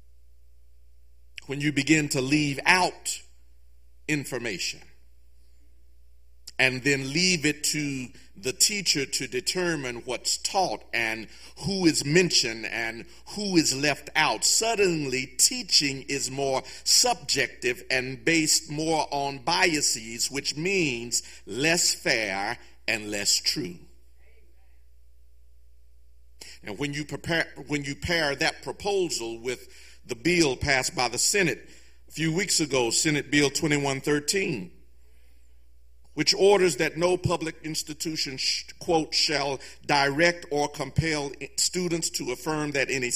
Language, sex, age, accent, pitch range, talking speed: English, male, 50-69, American, 115-160 Hz, 115 wpm